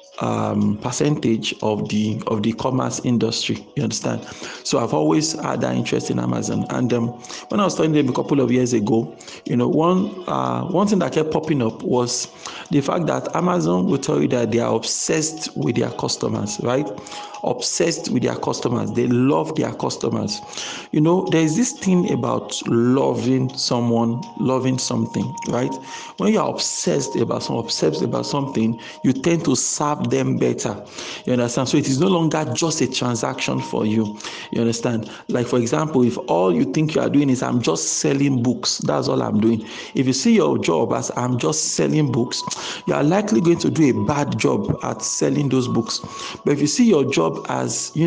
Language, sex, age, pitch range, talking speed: English, male, 50-69, 115-155 Hz, 195 wpm